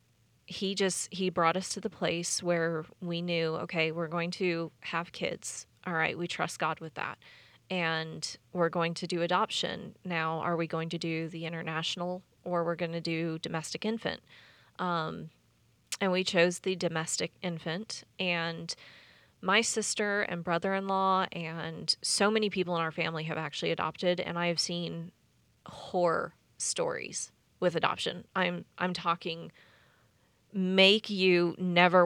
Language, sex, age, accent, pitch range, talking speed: English, female, 20-39, American, 165-185 Hz, 150 wpm